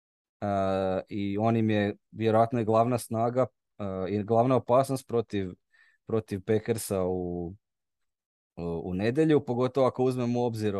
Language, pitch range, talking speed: Croatian, 100-125 Hz, 130 wpm